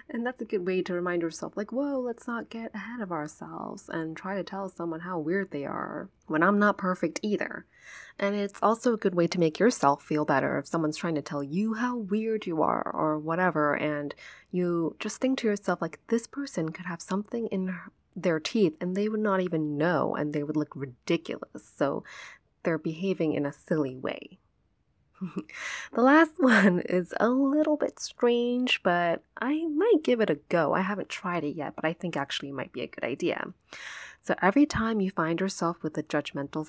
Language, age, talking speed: English, 20-39, 205 wpm